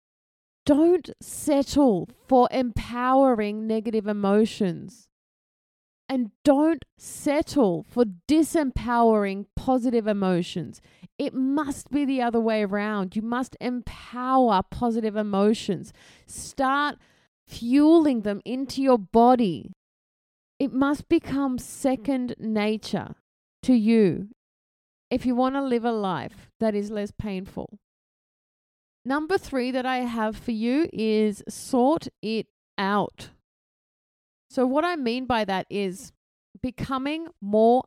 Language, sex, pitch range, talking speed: English, female, 210-265 Hz, 110 wpm